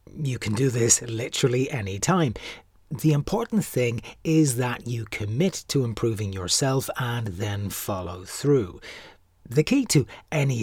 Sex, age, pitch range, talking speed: male, 60-79, 105-145 Hz, 140 wpm